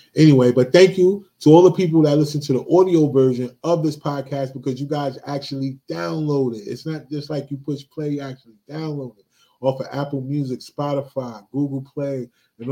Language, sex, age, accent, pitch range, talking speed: English, male, 20-39, American, 120-140 Hz, 200 wpm